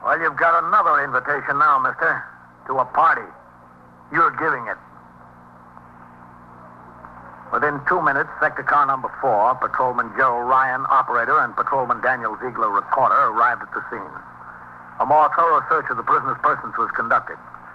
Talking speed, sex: 145 wpm, male